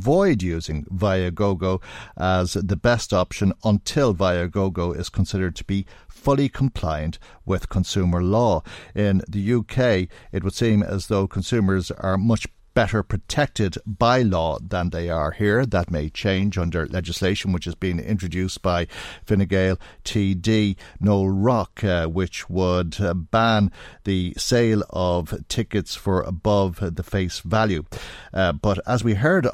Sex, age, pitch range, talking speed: male, 50-69, 90-105 Hz, 145 wpm